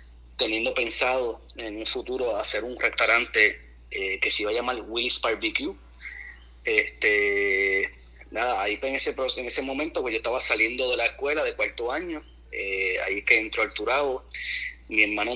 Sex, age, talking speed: male, 30-49, 170 wpm